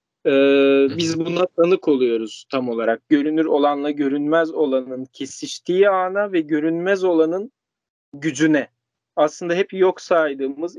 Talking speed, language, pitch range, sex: 115 wpm, Turkish, 150-190 Hz, male